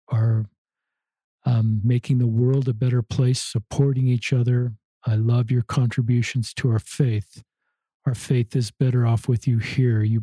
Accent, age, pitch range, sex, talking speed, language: American, 50-69, 115-130 Hz, male, 160 wpm, English